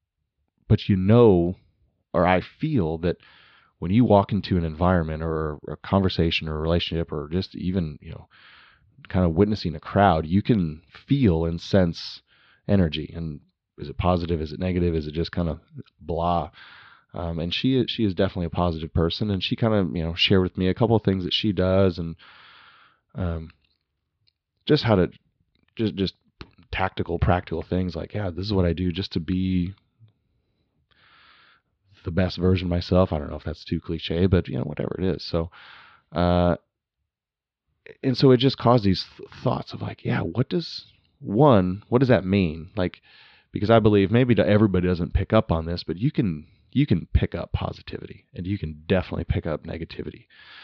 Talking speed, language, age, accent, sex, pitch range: 185 wpm, English, 30-49, American, male, 85-100 Hz